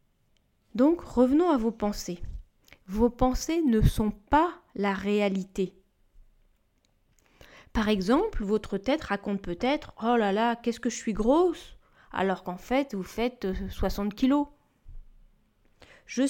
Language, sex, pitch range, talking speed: French, female, 200-265 Hz, 125 wpm